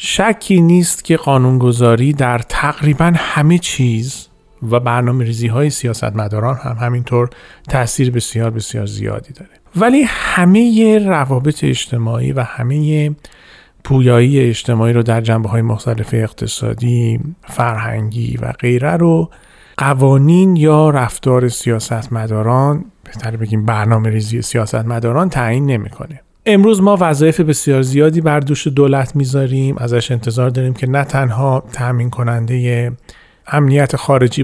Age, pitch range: 40-59, 120-145 Hz